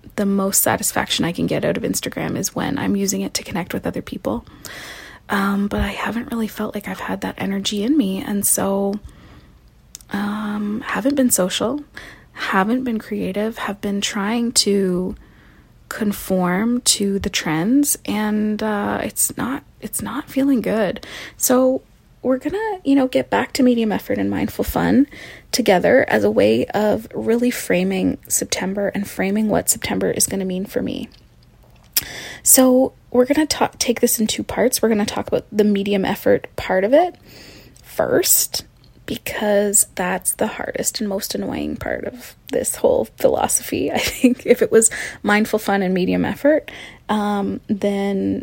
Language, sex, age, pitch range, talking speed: English, female, 20-39, 195-245 Hz, 165 wpm